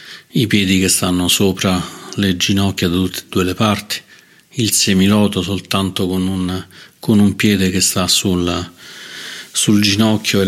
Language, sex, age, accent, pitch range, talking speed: Italian, male, 40-59, native, 95-105 Hz, 155 wpm